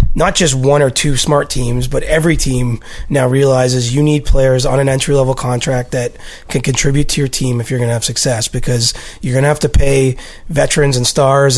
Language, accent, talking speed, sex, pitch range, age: English, American, 210 wpm, male, 125-145 Hz, 20-39